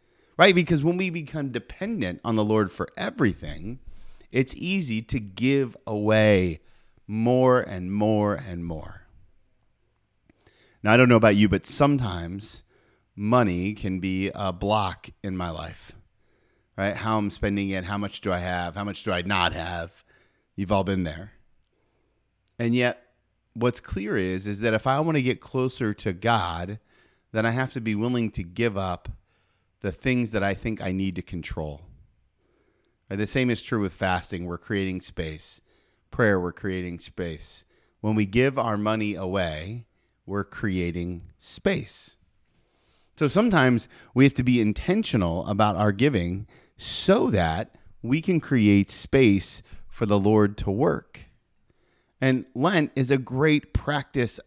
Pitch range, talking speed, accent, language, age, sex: 95-120 Hz, 155 wpm, American, English, 30-49, male